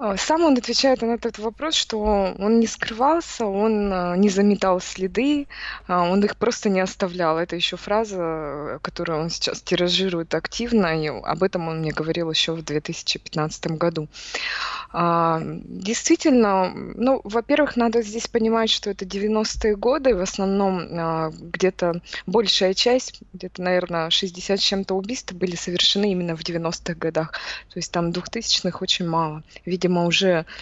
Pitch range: 170-205 Hz